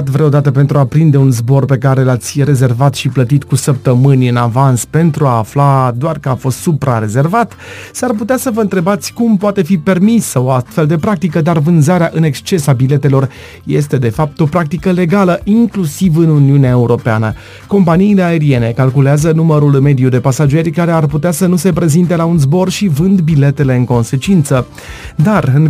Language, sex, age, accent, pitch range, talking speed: Romanian, male, 30-49, native, 135-185 Hz, 180 wpm